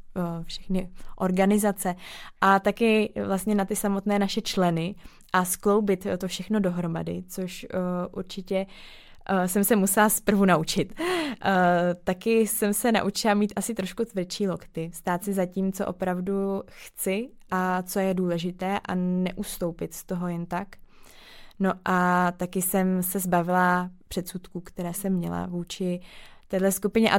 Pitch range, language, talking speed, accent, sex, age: 180-200 Hz, Czech, 140 wpm, native, female, 20-39